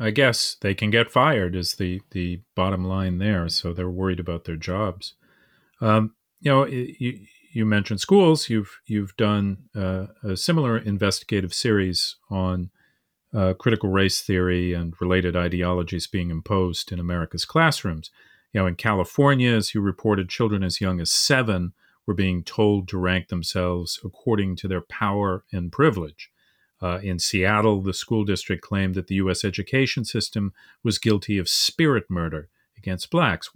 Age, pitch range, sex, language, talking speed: 40-59, 90-115 Hz, male, English, 160 wpm